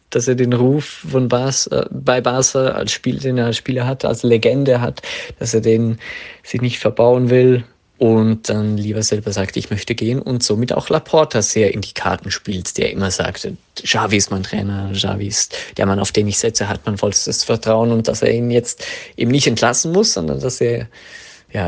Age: 20-39